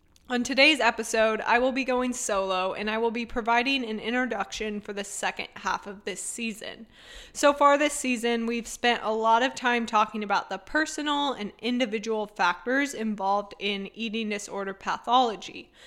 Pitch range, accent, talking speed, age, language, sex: 215-255 Hz, American, 165 wpm, 20-39, English, female